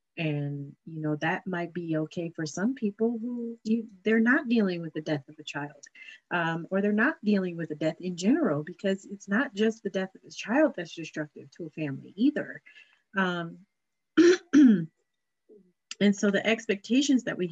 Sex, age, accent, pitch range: female, 30-49, American, 155-225 Hz